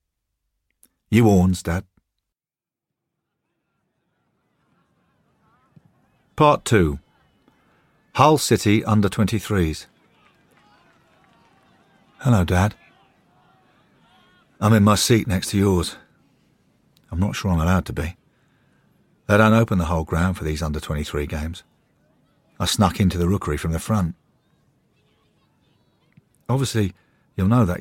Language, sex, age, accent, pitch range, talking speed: English, male, 50-69, British, 80-115 Hz, 100 wpm